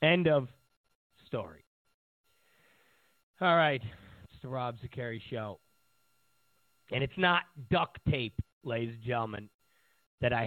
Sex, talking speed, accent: male, 115 wpm, American